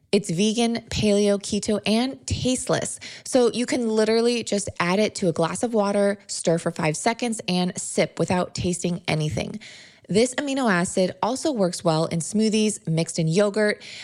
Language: English